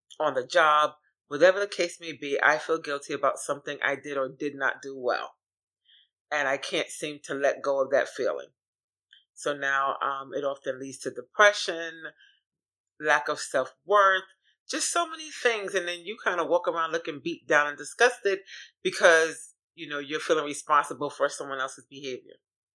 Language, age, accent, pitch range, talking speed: English, 30-49, American, 140-175 Hz, 175 wpm